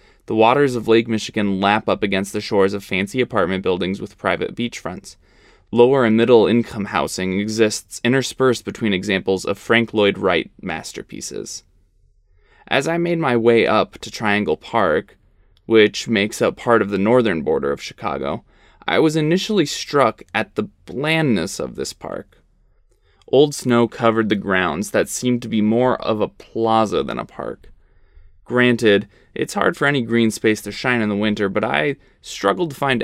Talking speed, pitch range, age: 170 wpm, 100-130 Hz, 20-39